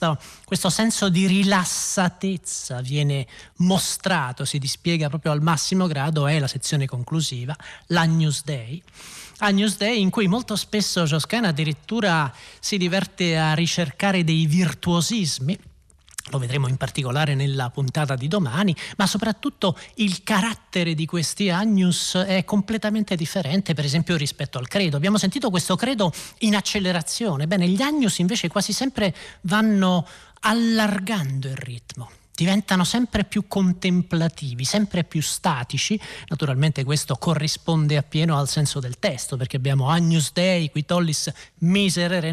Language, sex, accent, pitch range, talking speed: Italian, male, native, 150-195 Hz, 135 wpm